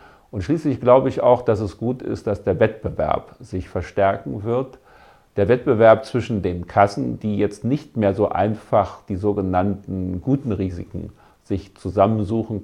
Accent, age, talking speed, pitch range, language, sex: German, 50-69, 150 wpm, 95-110 Hz, German, male